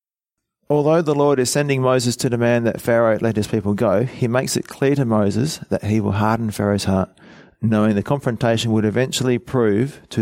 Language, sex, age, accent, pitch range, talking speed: English, male, 40-59, Australian, 100-125 Hz, 195 wpm